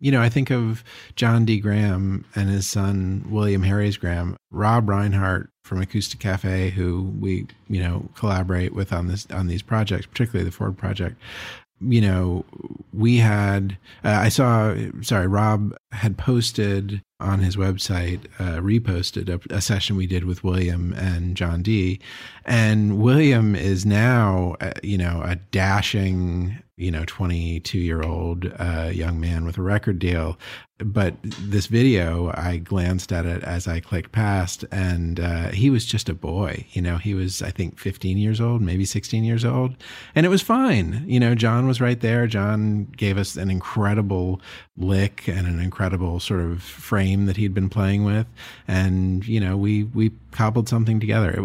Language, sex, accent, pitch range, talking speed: English, male, American, 90-110 Hz, 175 wpm